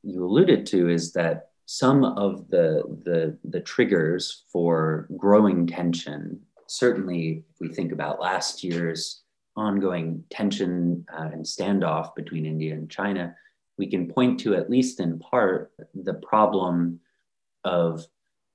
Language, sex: English, male